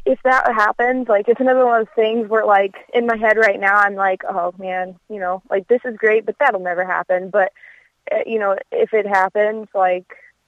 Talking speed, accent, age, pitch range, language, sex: 220 wpm, American, 20-39, 195-240 Hz, English, female